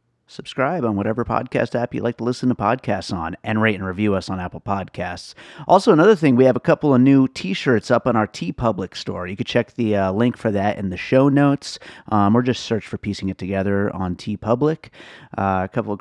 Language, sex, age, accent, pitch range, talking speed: English, male, 30-49, American, 95-120 Hz, 235 wpm